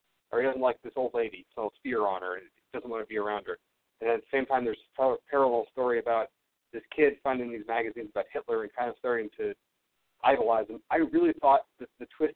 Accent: American